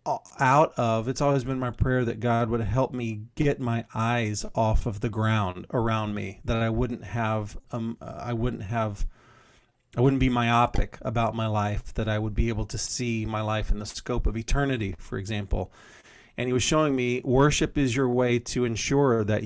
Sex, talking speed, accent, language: male, 195 wpm, American, English